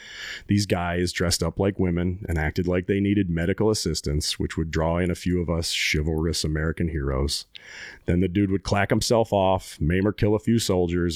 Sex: male